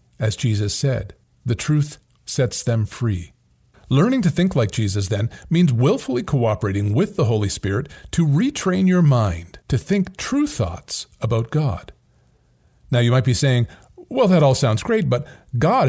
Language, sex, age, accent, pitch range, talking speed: English, male, 40-59, American, 110-155 Hz, 160 wpm